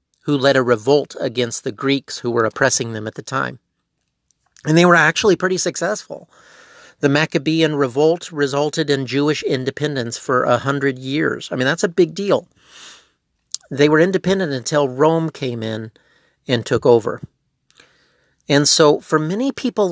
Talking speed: 155 wpm